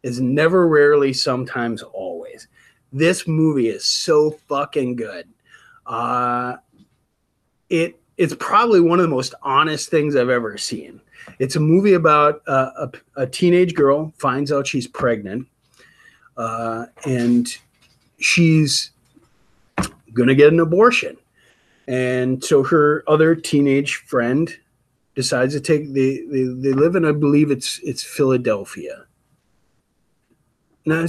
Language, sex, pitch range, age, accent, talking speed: English, male, 125-160 Hz, 30-49, American, 125 wpm